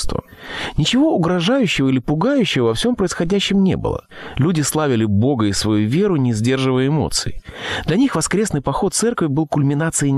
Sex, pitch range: male, 110-150 Hz